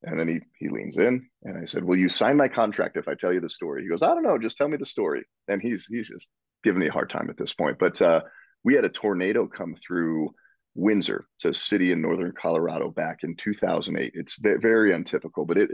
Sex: male